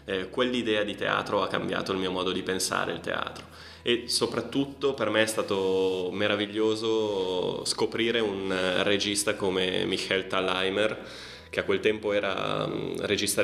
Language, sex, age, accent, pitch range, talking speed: Italian, male, 20-39, native, 95-110 Hz, 140 wpm